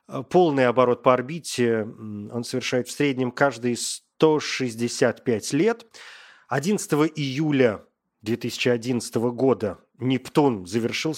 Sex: male